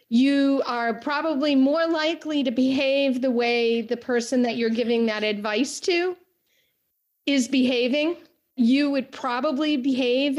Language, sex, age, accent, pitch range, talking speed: English, female, 40-59, American, 235-280 Hz, 135 wpm